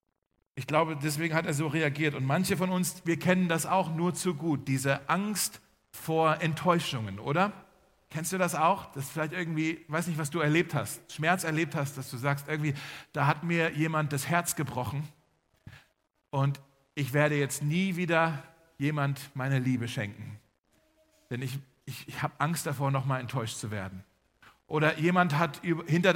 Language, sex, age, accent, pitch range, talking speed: German, male, 40-59, German, 140-175 Hz, 175 wpm